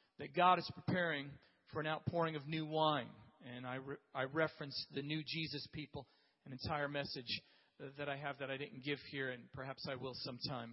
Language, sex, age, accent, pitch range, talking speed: English, male, 40-59, American, 150-185 Hz, 195 wpm